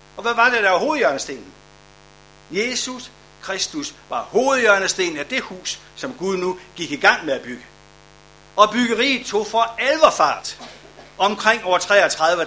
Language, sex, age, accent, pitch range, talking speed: Danish, male, 60-79, native, 165-245 Hz, 150 wpm